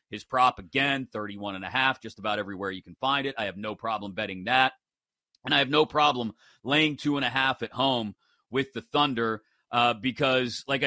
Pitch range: 110-135 Hz